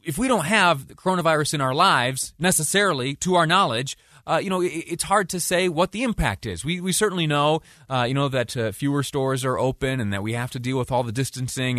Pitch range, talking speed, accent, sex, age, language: 100-140 Hz, 240 wpm, American, male, 30-49, English